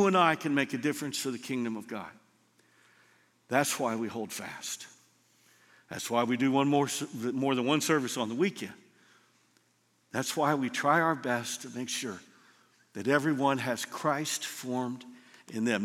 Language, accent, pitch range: English, American, 125-170 Hz